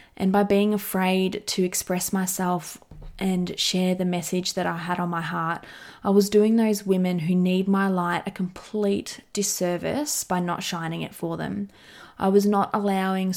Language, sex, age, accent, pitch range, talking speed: English, female, 20-39, Australian, 180-210 Hz, 175 wpm